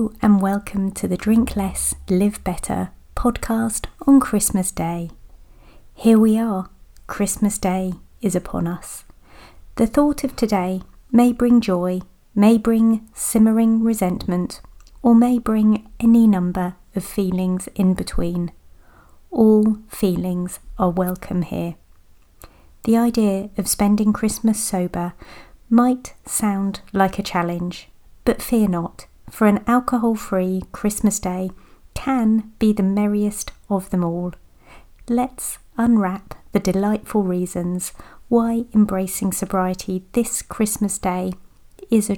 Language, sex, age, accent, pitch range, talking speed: English, female, 30-49, British, 185-220 Hz, 120 wpm